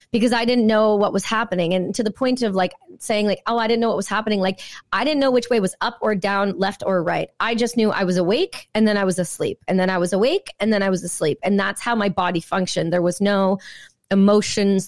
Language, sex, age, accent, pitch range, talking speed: English, female, 30-49, American, 180-225 Hz, 265 wpm